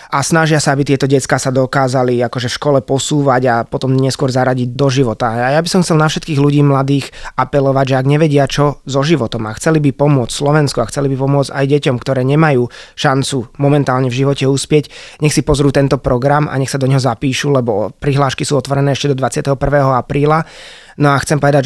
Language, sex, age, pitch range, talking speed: Slovak, male, 20-39, 130-145 Hz, 210 wpm